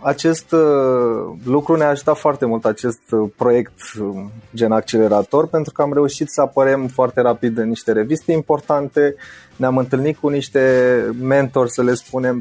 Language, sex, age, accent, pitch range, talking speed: Romanian, male, 20-39, native, 115-145 Hz, 145 wpm